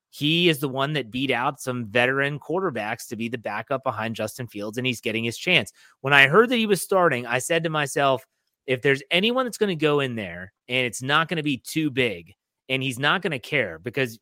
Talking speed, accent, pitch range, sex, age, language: 240 wpm, American, 115-145 Hz, male, 30-49, English